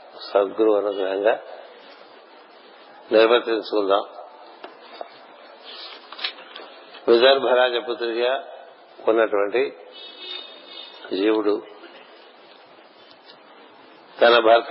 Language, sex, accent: Telugu, male, native